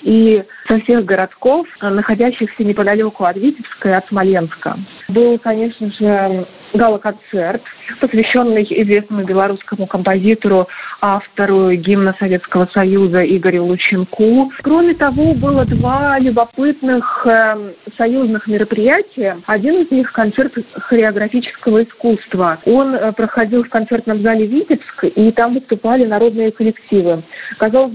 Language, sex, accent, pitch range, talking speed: Russian, female, native, 200-240 Hz, 105 wpm